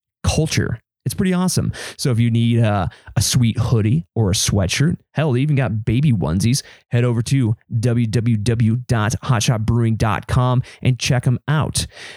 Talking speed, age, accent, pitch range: 145 wpm, 30-49, American, 115-145 Hz